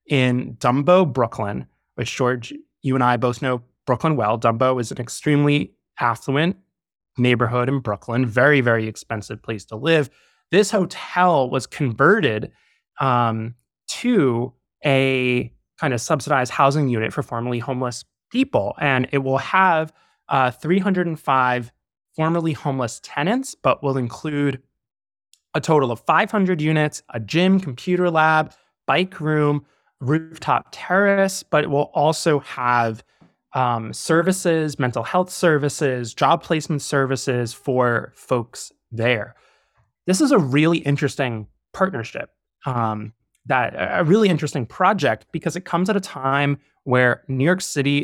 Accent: American